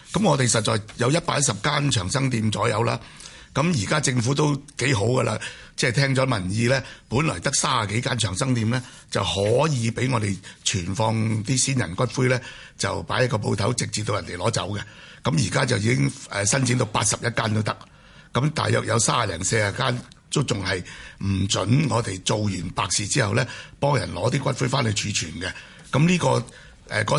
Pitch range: 110-135 Hz